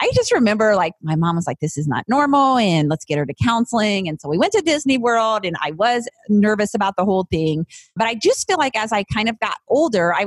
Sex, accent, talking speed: female, American, 265 wpm